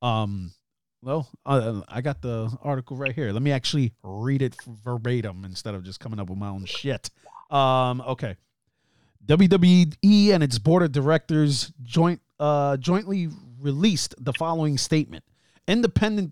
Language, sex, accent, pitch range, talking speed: English, male, American, 125-170 Hz, 145 wpm